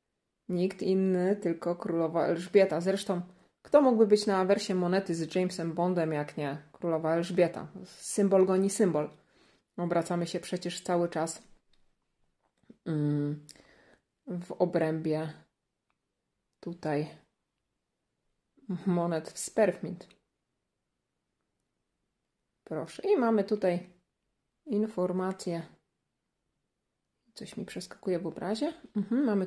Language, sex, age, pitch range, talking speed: Polish, female, 30-49, 175-205 Hz, 90 wpm